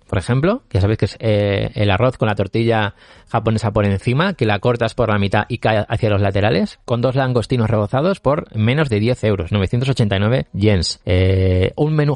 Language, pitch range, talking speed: Spanish, 100-130 Hz, 195 wpm